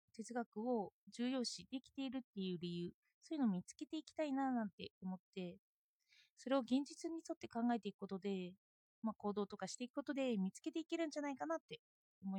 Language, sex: Japanese, female